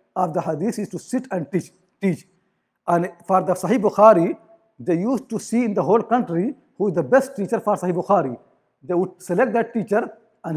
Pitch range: 180-230 Hz